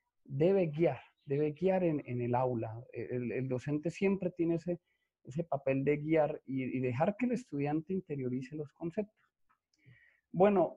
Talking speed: 155 wpm